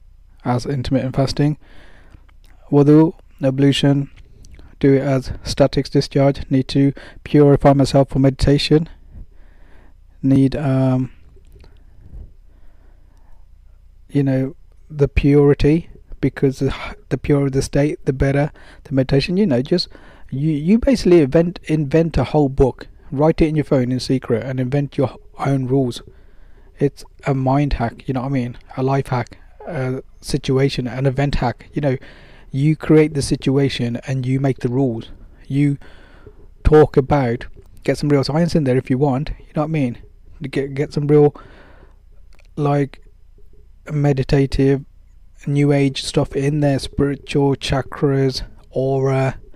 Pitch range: 95-140 Hz